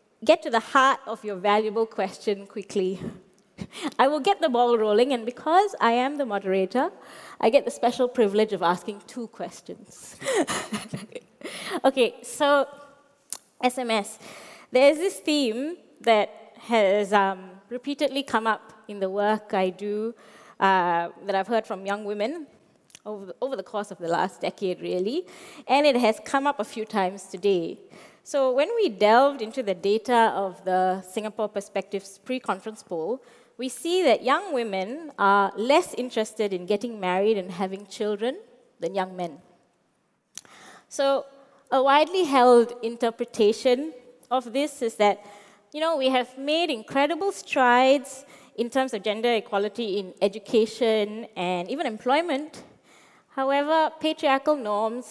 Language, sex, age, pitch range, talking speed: English, female, 20-39, 205-270 Hz, 145 wpm